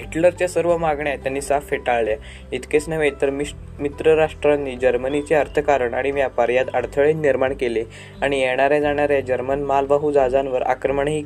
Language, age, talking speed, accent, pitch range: Marathi, 20-39, 110 wpm, native, 130-145 Hz